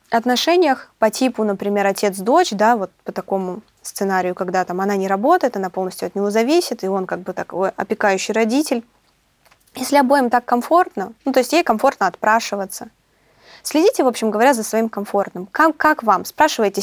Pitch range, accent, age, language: 200-270 Hz, native, 20-39, Russian